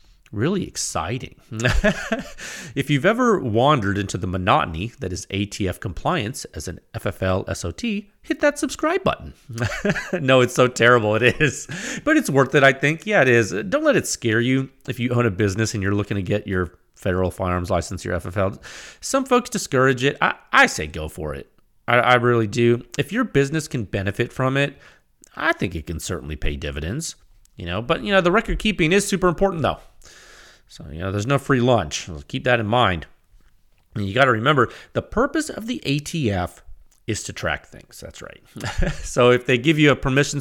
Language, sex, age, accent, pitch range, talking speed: English, male, 30-49, American, 105-165 Hz, 195 wpm